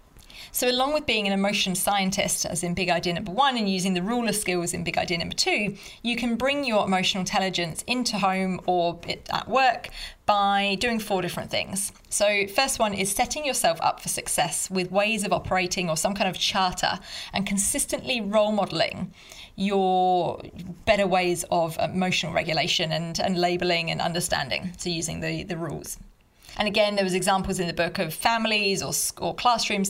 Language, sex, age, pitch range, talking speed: English, female, 30-49, 175-205 Hz, 180 wpm